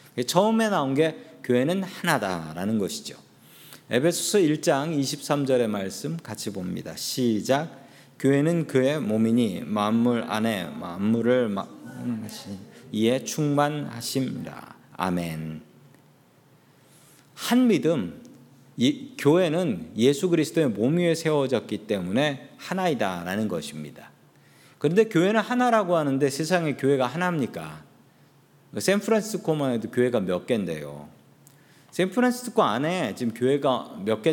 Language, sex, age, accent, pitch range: Korean, male, 40-59, native, 110-170 Hz